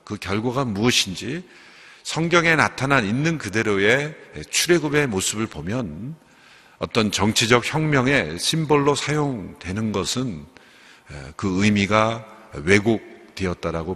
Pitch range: 105-140 Hz